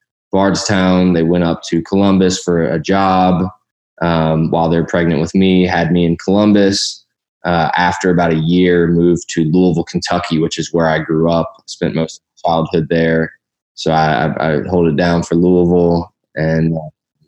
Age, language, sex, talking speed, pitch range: 20-39, English, male, 175 wpm, 85-95 Hz